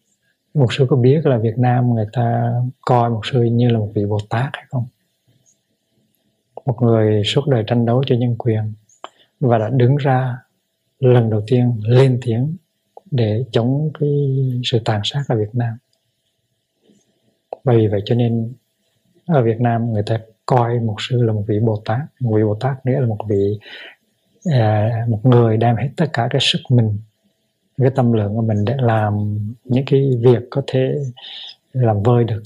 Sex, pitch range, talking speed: male, 110-130 Hz, 180 wpm